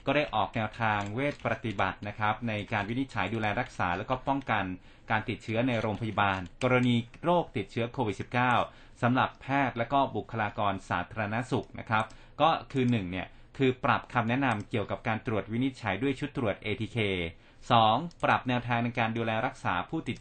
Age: 30-49